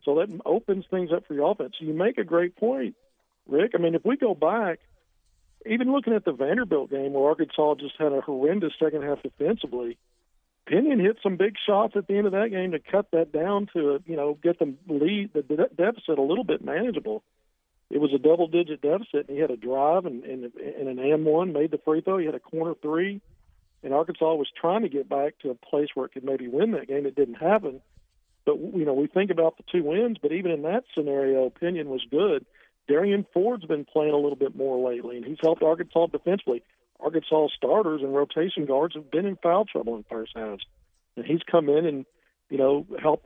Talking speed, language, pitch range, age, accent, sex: 220 wpm, English, 140-180 Hz, 50-69, American, male